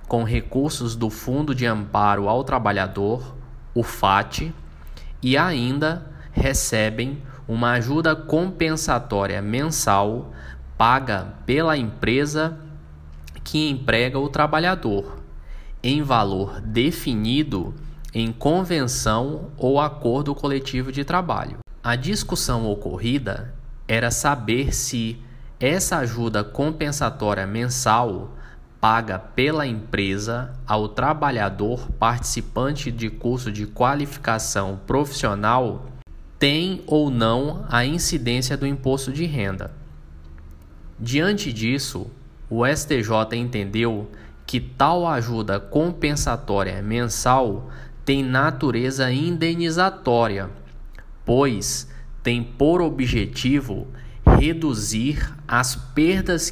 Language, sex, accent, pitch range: Portuguese, male, Brazilian, 110-145 Hz